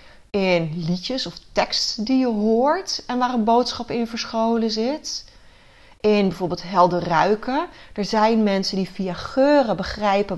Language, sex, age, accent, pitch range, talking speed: Dutch, female, 30-49, Dutch, 190-250 Hz, 145 wpm